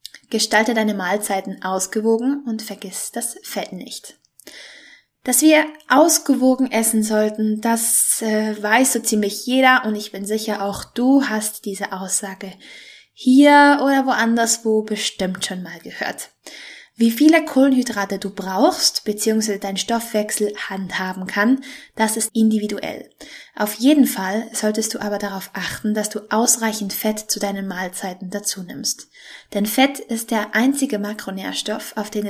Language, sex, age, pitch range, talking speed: German, female, 20-39, 205-245 Hz, 135 wpm